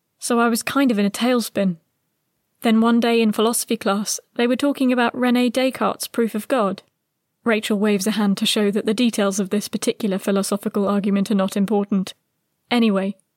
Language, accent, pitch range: English, British, 205-245 Hz